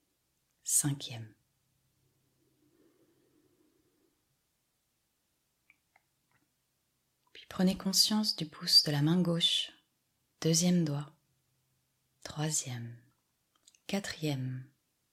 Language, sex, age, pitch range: French, female, 30-49, 130-185 Hz